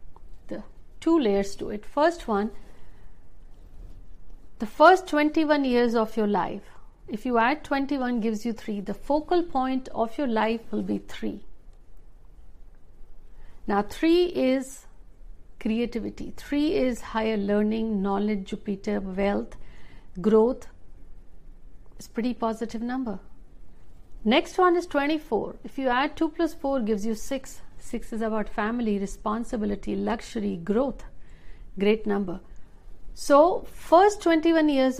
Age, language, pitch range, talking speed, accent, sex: 60-79, Hindi, 200-265 Hz, 120 wpm, native, female